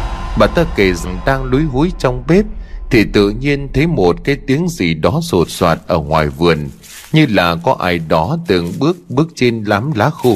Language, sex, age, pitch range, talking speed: Vietnamese, male, 20-39, 85-135 Hz, 205 wpm